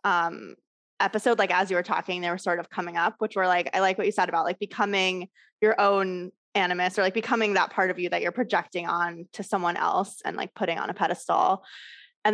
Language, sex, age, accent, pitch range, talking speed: English, female, 20-39, American, 175-210 Hz, 235 wpm